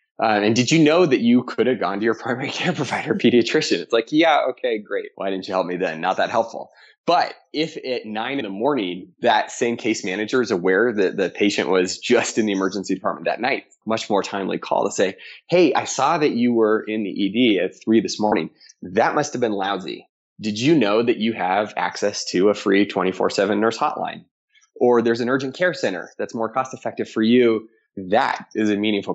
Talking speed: 220 wpm